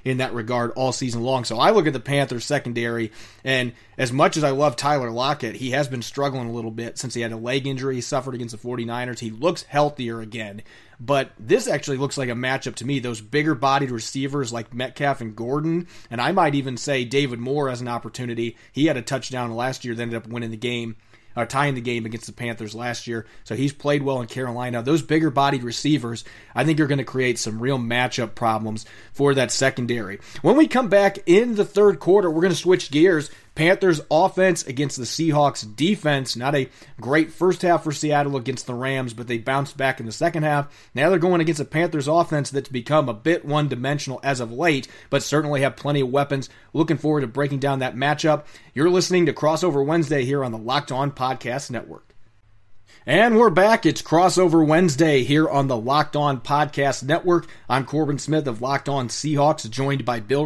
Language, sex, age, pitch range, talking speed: English, male, 30-49, 120-150 Hz, 210 wpm